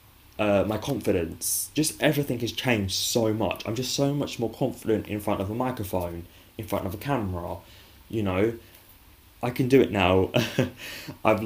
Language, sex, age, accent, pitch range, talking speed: English, male, 10-29, British, 95-110 Hz, 175 wpm